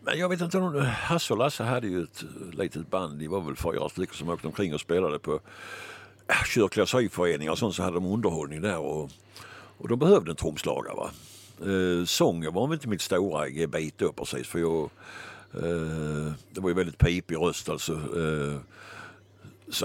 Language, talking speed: Swedish, 185 wpm